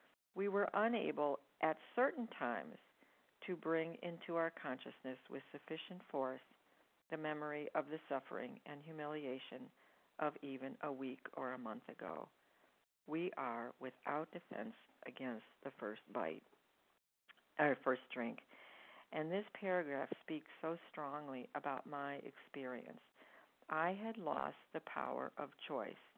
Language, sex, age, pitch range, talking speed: English, female, 50-69, 145-180 Hz, 130 wpm